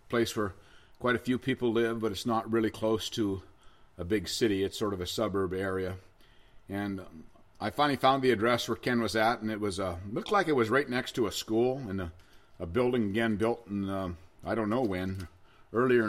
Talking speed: 220 wpm